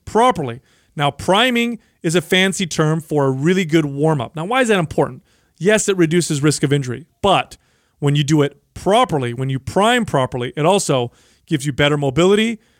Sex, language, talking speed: male, English, 190 wpm